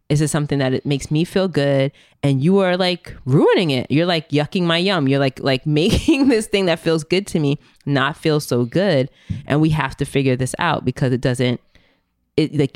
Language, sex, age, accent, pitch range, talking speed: English, female, 20-39, American, 135-175 Hz, 220 wpm